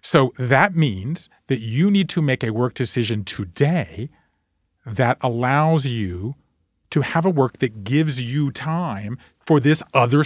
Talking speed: 150 wpm